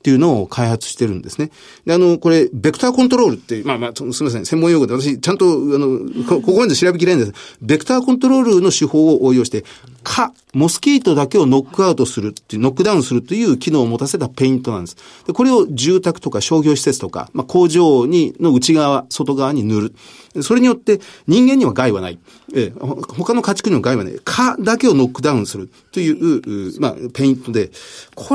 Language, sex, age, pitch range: Japanese, male, 40-59, 120-195 Hz